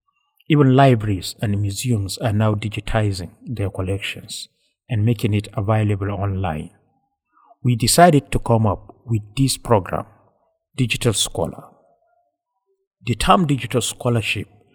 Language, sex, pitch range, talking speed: English, male, 105-130 Hz, 115 wpm